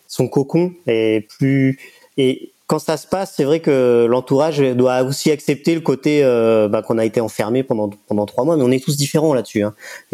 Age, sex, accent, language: 30-49, male, French, French